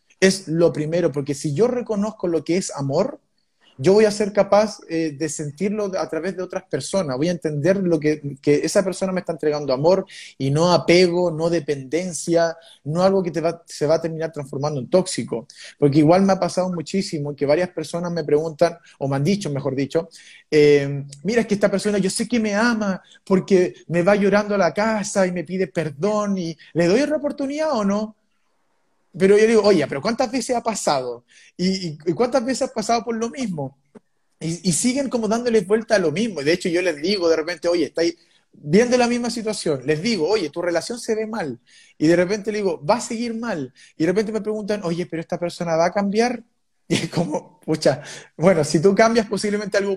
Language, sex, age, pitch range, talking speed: Spanish, male, 20-39, 160-210 Hz, 215 wpm